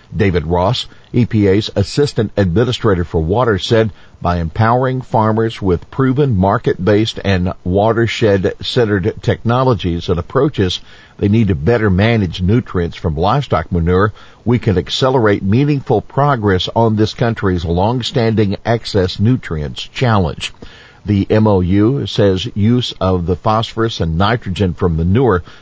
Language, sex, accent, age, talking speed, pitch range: English, male, American, 50-69, 120 wpm, 95-120 Hz